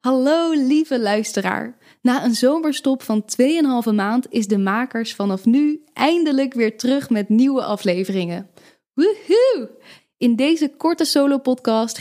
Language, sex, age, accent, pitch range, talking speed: Dutch, female, 10-29, Dutch, 210-260 Hz, 130 wpm